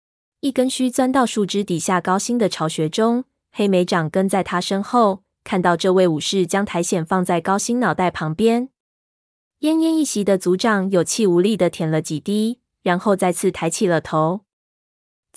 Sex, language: female, Chinese